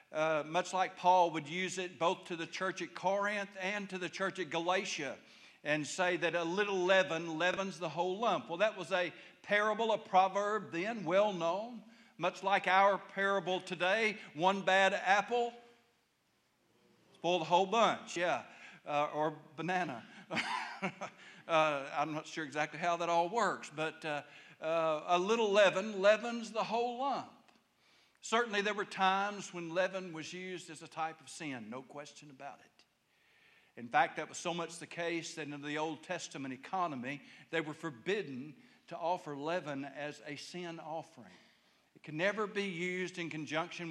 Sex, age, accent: male, 60-79, American